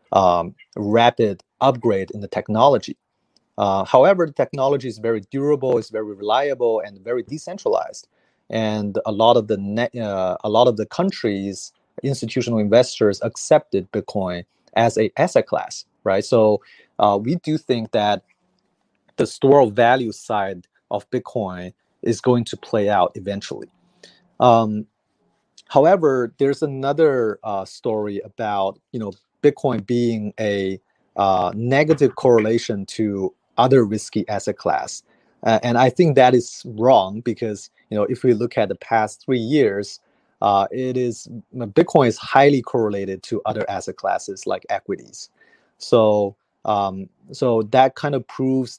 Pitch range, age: 105-130 Hz, 30-49